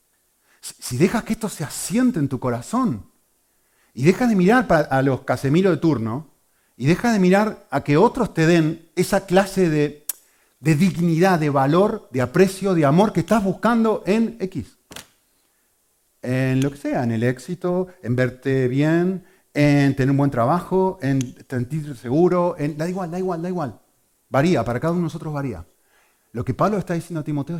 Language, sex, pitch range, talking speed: Spanish, male, 130-185 Hz, 180 wpm